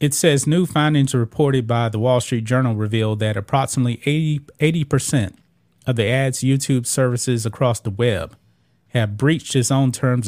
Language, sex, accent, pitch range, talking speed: English, male, American, 110-135 Hz, 170 wpm